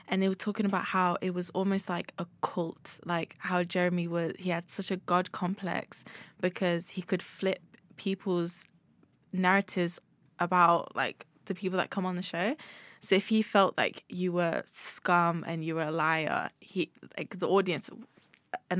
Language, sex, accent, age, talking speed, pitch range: English, female, British, 20-39, 175 wpm, 170-195 Hz